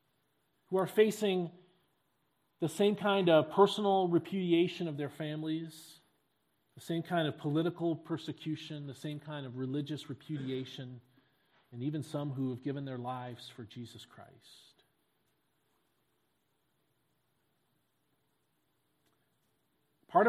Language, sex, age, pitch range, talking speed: English, male, 40-59, 140-175 Hz, 105 wpm